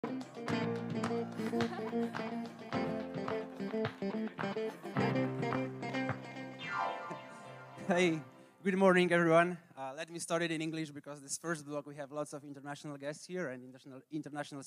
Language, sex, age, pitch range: Polish, male, 20-39, 145-180 Hz